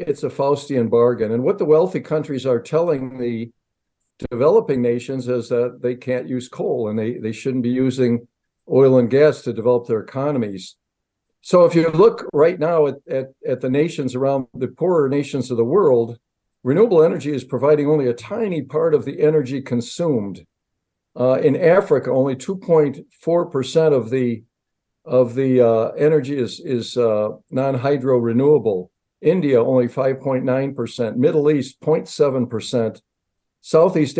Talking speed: 155 wpm